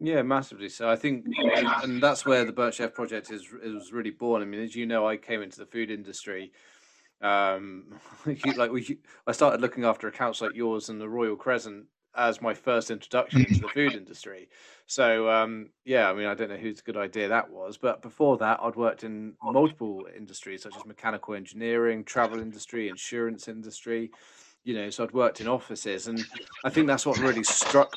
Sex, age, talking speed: male, 30-49, 195 wpm